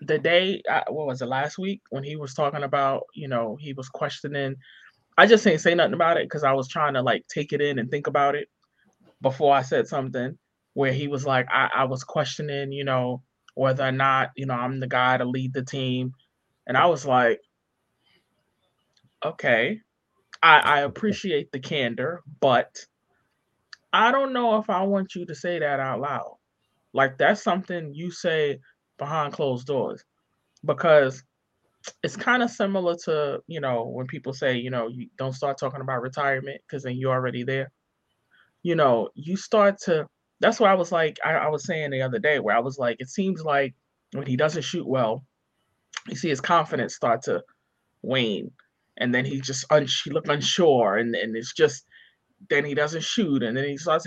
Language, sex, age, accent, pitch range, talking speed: English, male, 20-39, American, 130-170 Hz, 190 wpm